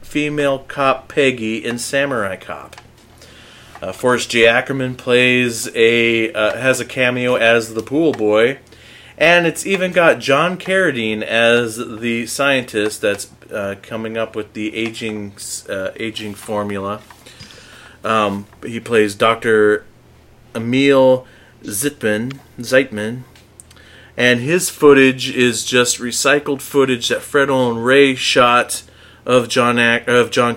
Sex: male